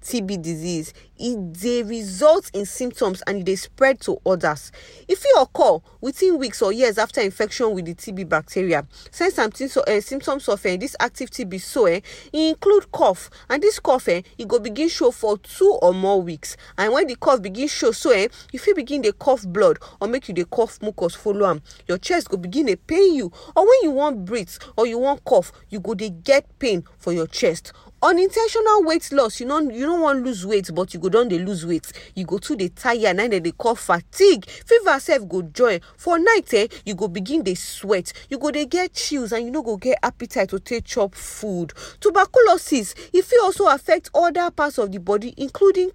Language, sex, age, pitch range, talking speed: English, female, 40-59, 195-320 Hz, 215 wpm